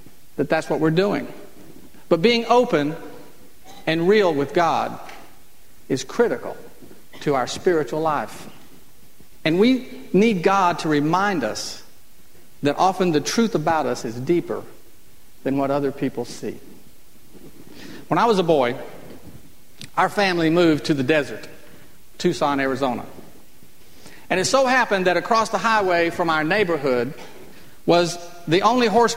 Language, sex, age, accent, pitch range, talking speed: English, male, 50-69, American, 155-200 Hz, 135 wpm